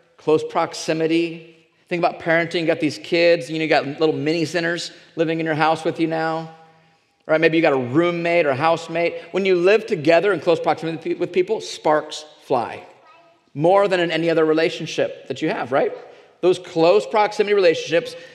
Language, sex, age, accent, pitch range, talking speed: English, male, 40-59, American, 155-255 Hz, 185 wpm